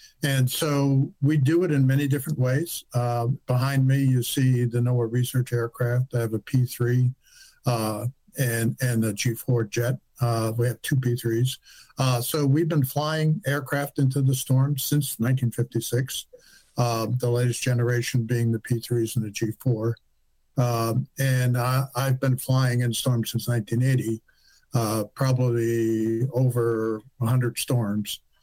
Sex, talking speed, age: male, 145 wpm, 60-79